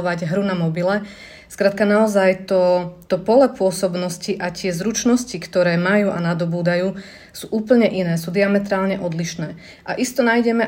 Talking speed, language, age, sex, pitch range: 140 wpm, Slovak, 30-49, female, 180-210 Hz